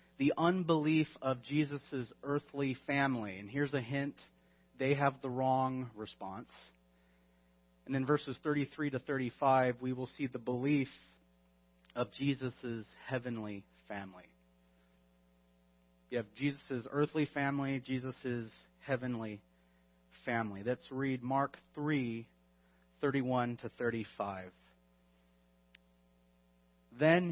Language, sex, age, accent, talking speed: English, male, 30-49, American, 100 wpm